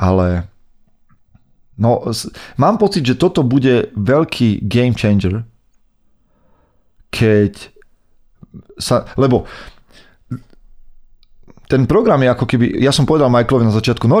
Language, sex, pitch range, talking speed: Slovak, male, 105-130 Hz, 110 wpm